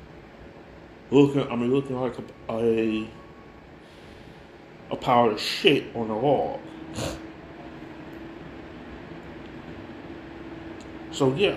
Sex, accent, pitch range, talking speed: male, American, 115-140 Hz, 85 wpm